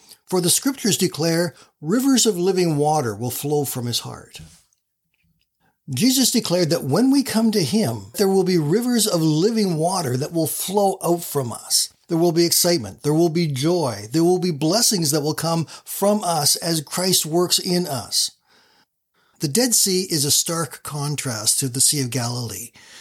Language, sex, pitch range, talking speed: English, male, 145-195 Hz, 175 wpm